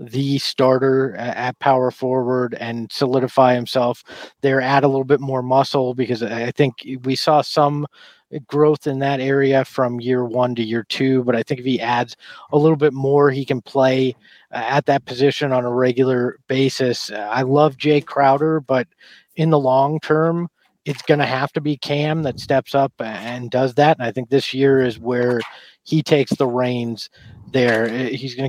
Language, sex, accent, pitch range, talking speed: English, male, American, 125-145 Hz, 185 wpm